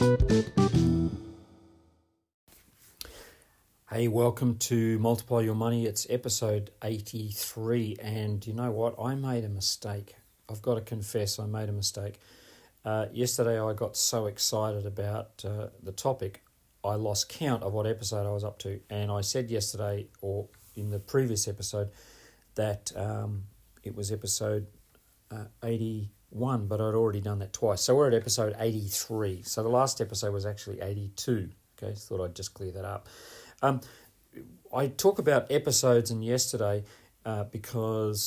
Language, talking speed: English, 150 wpm